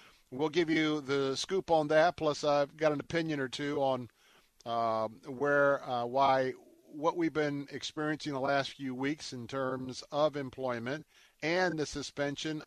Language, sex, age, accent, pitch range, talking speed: English, male, 50-69, American, 135-165 Hz, 160 wpm